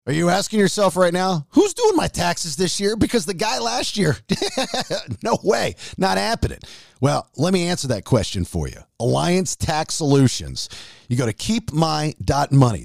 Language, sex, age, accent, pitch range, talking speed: English, male, 40-59, American, 130-185 Hz, 170 wpm